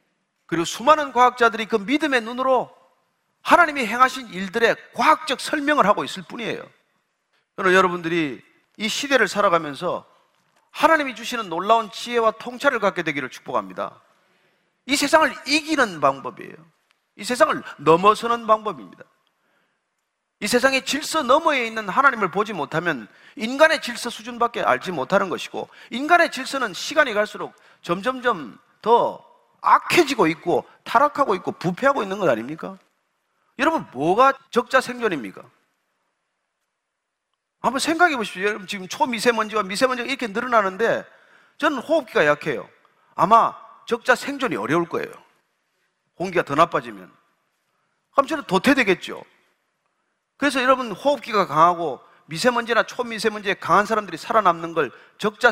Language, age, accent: Korean, 40-59, native